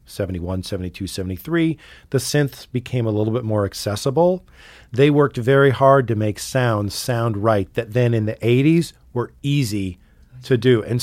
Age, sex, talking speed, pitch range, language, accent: 40-59, male, 165 wpm, 105-140 Hz, English, American